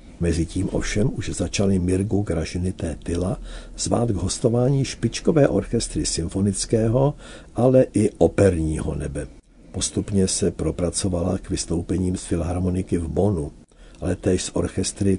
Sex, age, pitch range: male, 60-79, 80-105 Hz